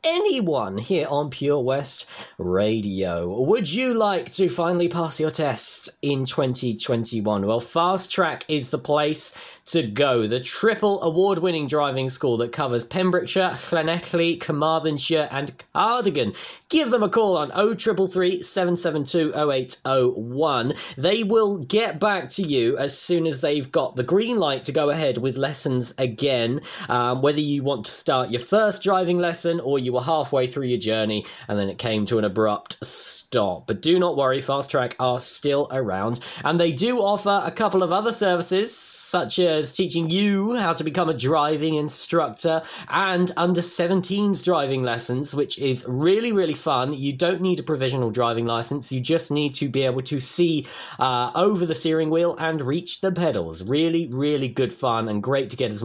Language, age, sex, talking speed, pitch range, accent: English, 20-39, male, 175 wpm, 130-180 Hz, British